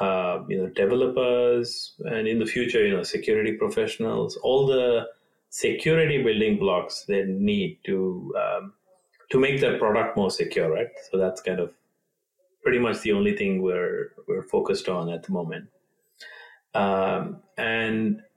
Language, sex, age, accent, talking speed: English, male, 30-49, Indian, 150 wpm